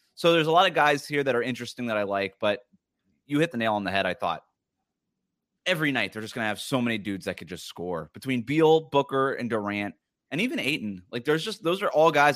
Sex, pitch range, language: male, 110-145 Hz, English